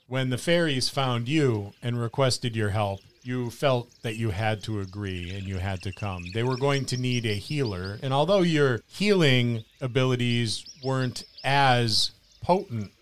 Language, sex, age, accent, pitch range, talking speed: English, male, 40-59, American, 100-130 Hz, 165 wpm